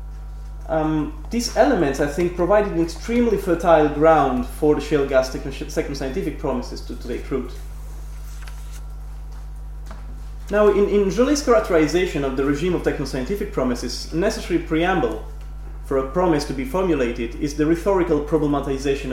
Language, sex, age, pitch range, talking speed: French, male, 30-49, 125-175 Hz, 140 wpm